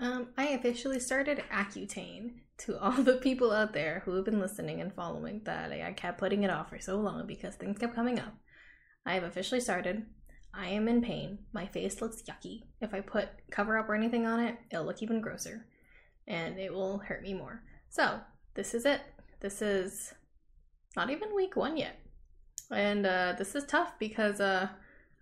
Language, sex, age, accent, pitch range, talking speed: English, female, 10-29, American, 195-245 Hz, 195 wpm